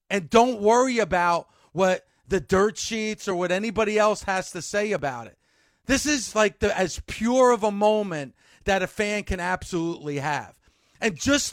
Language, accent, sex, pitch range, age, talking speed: English, American, male, 190-230 Hz, 40-59, 175 wpm